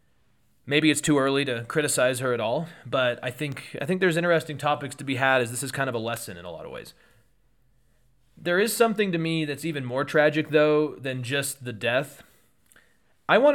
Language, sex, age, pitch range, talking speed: English, male, 30-49, 120-145 Hz, 215 wpm